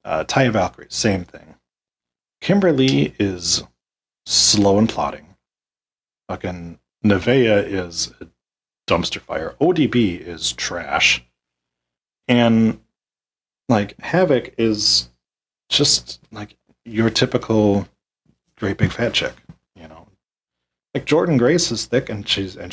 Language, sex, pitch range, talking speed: English, male, 85-115 Hz, 110 wpm